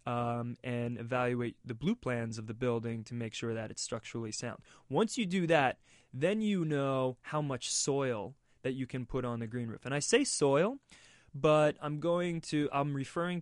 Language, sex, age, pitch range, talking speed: English, male, 20-39, 120-150 Hz, 210 wpm